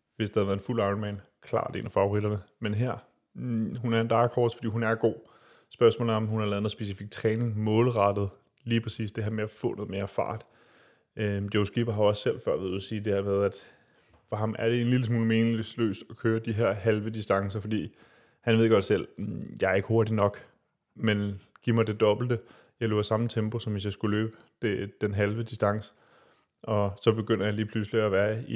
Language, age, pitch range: Danish, 30-49, 105-115 Hz